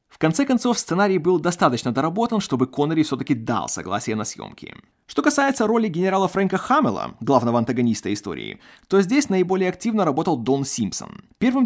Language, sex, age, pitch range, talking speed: Russian, male, 20-39, 135-205 Hz, 160 wpm